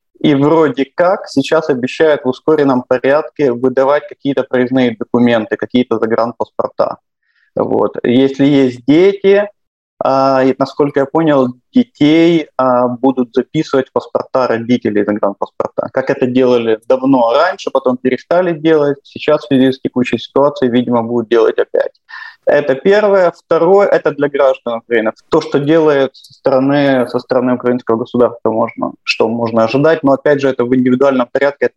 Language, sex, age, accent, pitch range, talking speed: Russian, male, 20-39, native, 125-160 Hz, 130 wpm